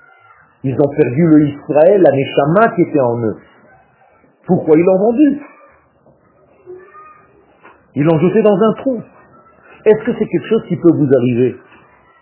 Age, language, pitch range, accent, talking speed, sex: 50-69, French, 120-170 Hz, French, 145 wpm, male